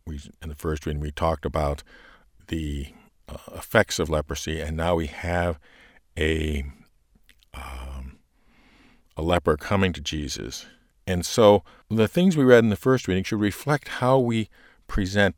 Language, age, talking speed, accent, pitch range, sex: English, 50-69, 150 wpm, American, 80-105 Hz, male